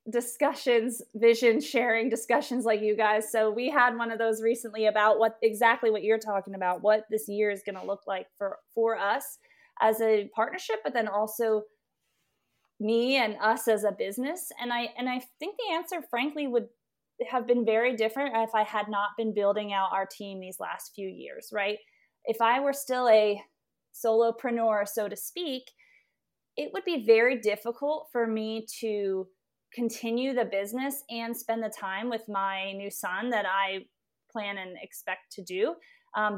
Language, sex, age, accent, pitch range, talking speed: English, female, 20-39, American, 215-255 Hz, 175 wpm